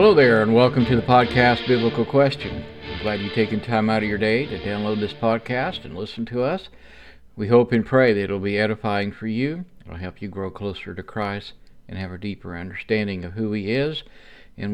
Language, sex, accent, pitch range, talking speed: English, male, American, 100-125 Hz, 220 wpm